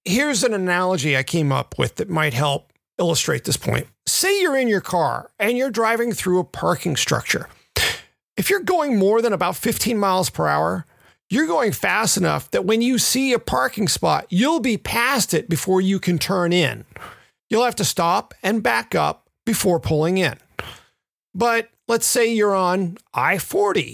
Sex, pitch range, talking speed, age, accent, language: male, 170-230 Hz, 180 wpm, 40-59, American, English